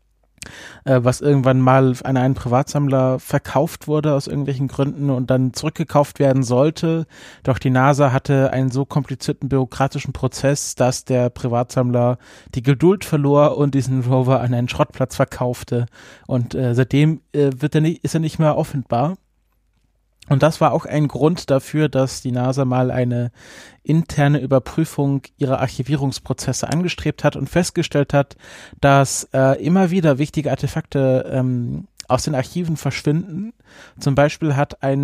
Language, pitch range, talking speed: German, 130-145 Hz, 145 wpm